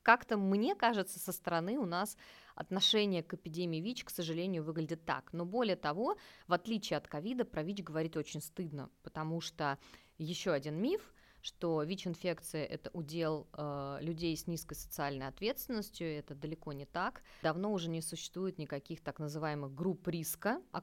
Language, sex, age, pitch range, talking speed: Russian, female, 20-39, 155-200 Hz, 165 wpm